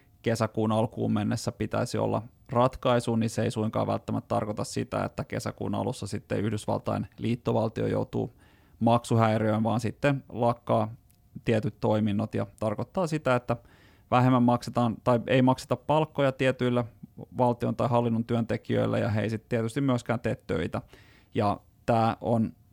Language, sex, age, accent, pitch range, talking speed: Finnish, male, 20-39, native, 110-125 Hz, 135 wpm